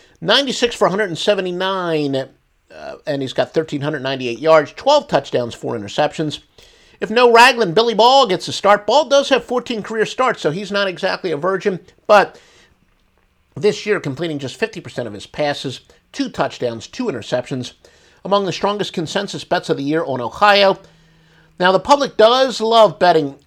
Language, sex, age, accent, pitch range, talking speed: English, male, 50-69, American, 145-210 Hz, 160 wpm